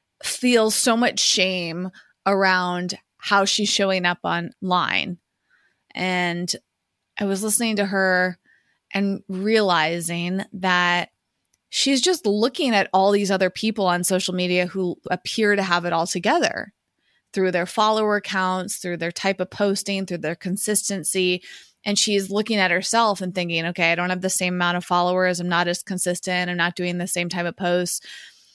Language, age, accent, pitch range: English, 20-39, American, 180-210 Hz